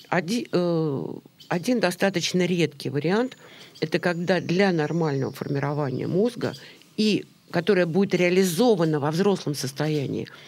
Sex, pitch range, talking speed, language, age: female, 155-195 Hz, 105 wpm, Russian, 50-69